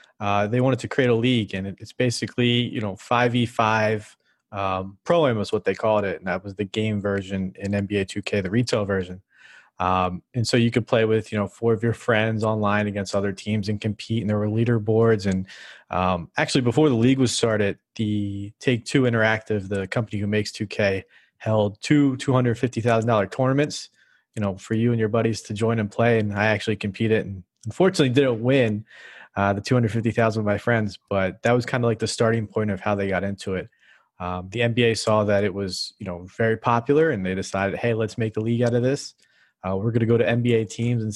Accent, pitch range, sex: American, 105-120 Hz, male